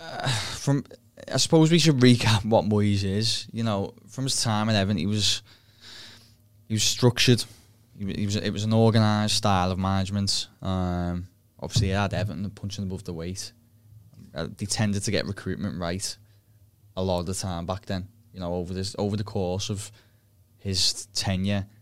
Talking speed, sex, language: 180 wpm, male, English